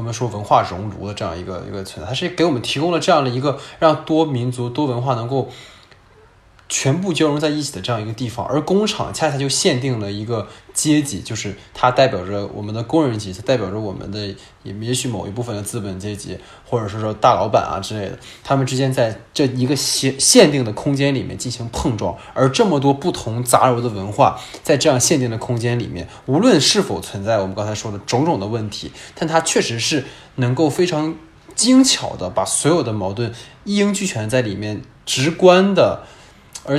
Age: 20-39